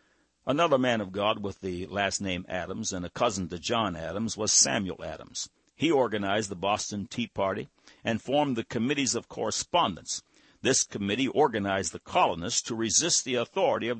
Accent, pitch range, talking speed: American, 105-140 Hz, 170 wpm